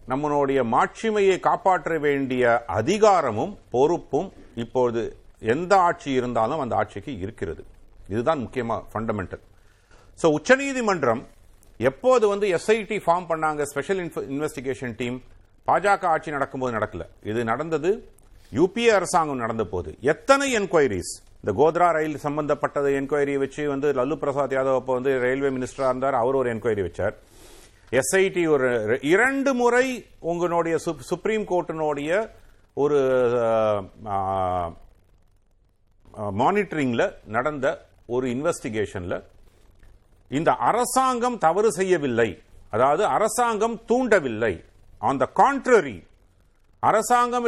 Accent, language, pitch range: native, Tamil, 120-200 Hz